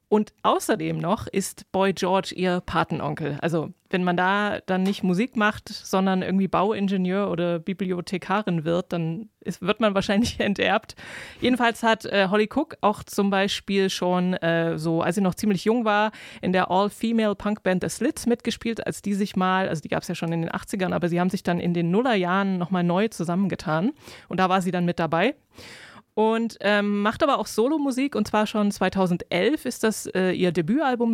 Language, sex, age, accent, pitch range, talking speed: German, female, 20-39, German, 180-215 Hz, 185 wpm